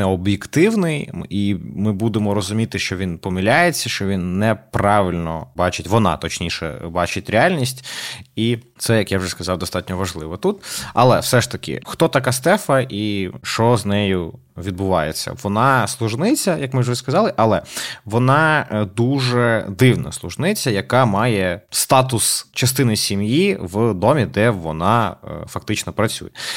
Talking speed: 135 wpm